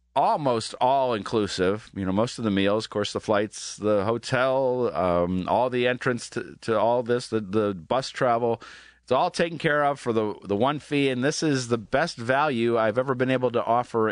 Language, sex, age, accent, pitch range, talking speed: English, male, 40-59, American, 100-135 Hz, 205 wpm